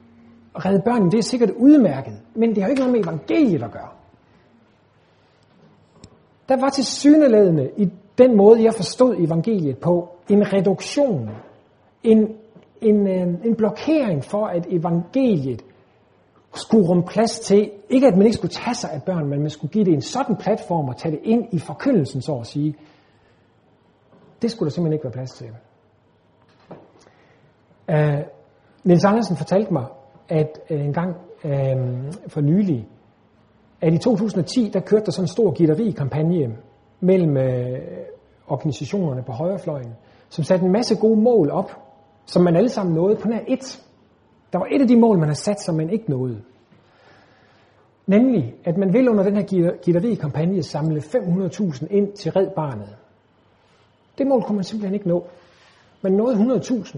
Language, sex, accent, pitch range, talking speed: Danish, male, native, 140-215 Hz, 165 wpm